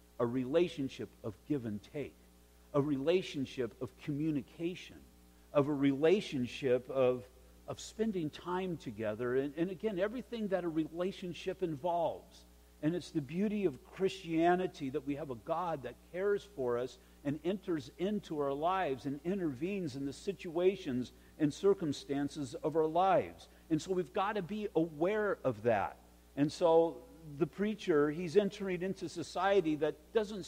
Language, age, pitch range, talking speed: English, 50-69, 140-185 Hz, 150 wpm